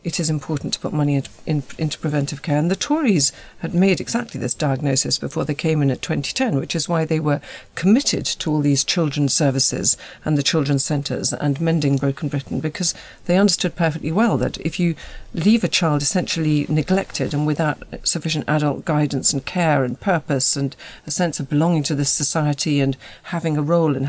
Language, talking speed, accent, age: English, 190 wpm, British, 50-69